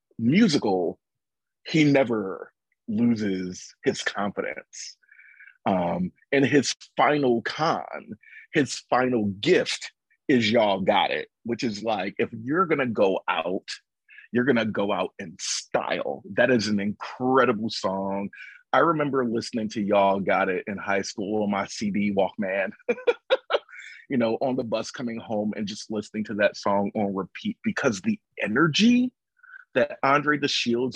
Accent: American